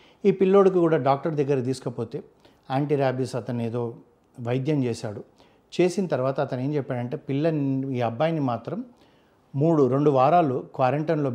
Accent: native